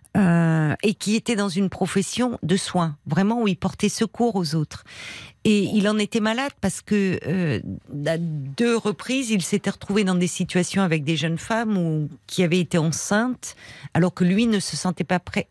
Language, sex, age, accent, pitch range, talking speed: French, female, 50-69, French, 155-200 Hz, 195 wpm